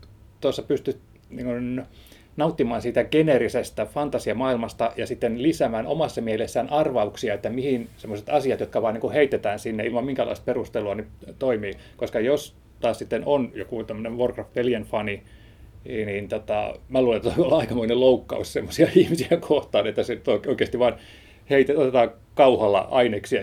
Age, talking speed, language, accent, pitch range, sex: 30-49, 145 wpm, Finnish, native, 105-130 Hz, male